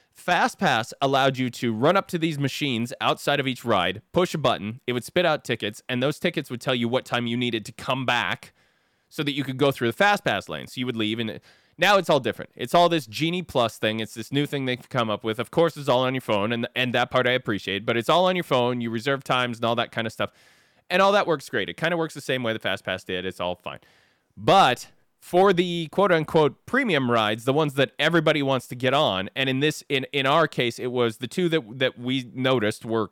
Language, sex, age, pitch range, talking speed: English, male, 20-39, 115-155 Hz, 260 wpm